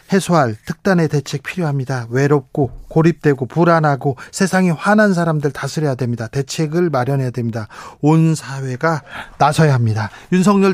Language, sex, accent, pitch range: Korean, male, native, 140-185 Hz